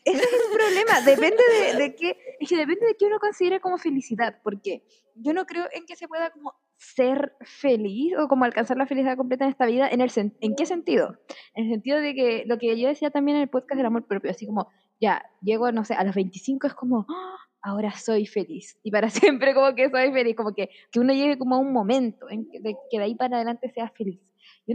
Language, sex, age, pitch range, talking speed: Spanish, female, 10-29, 210-290 Hz, 245 wpm